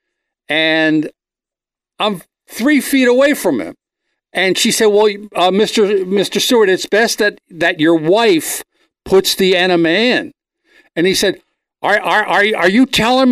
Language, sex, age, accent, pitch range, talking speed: English, male, 60-79, American, 155-250 Hz, 155 wpm